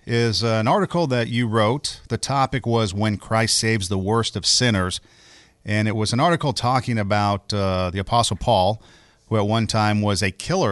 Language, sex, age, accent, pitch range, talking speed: English, male, 50-69, American, 100-125 Hz, 190 wpm